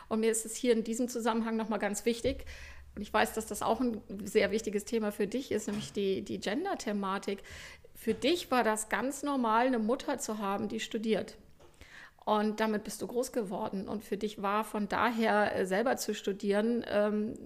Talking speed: 190 wpm